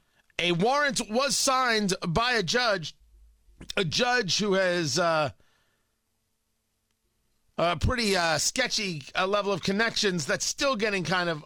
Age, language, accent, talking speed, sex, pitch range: 40-59, English, American, 130 wpm, male, 160-205 Hz